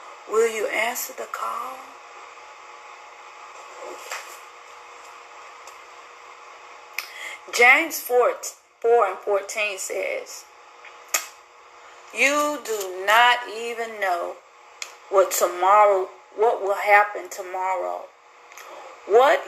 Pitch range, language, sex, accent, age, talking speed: 210-275 Hz, English, female, American, 40-59, 70 wpm